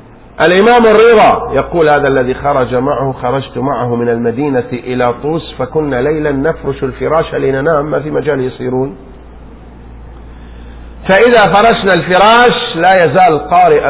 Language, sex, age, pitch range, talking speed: Arabic, male, 50-69, 105-165 Hz, 120 wpm